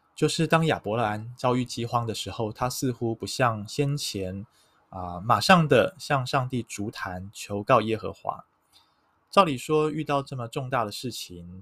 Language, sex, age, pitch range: Chinese, male, 20-39, 110-140 Hz